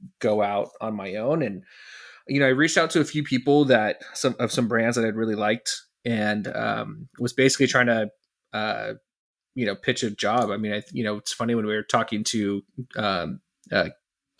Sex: male